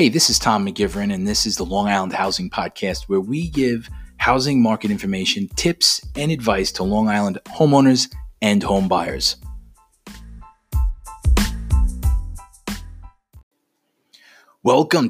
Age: 30-49